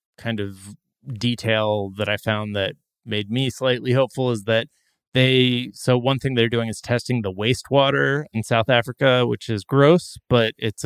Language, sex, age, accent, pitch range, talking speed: English, male, 20-39, American, 105-125 Hz, 170 wpm